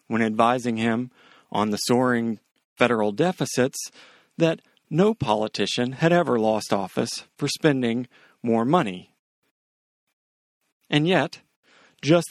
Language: English